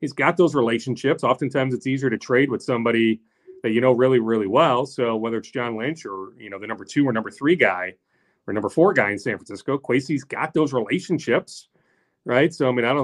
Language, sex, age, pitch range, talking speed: English, male, 30-49, 120-155 Hz, 225 wpm